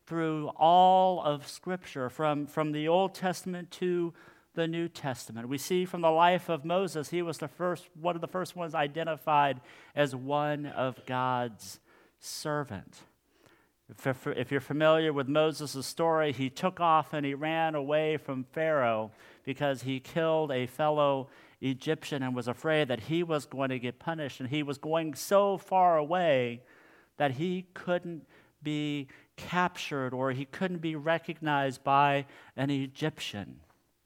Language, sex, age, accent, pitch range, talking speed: English, male, 50-69, American, 125-160 Hz, 155 wpm